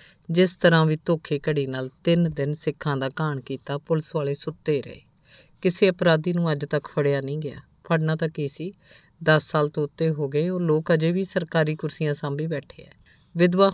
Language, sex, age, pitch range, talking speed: Punjabi, female, 50-69, 145-165 Hz, 190 wpm